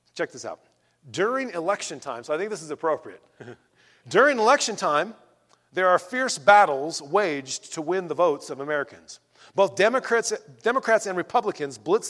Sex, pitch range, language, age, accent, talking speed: male, 160-215 Hz, English, 40-59, American, 160 wpm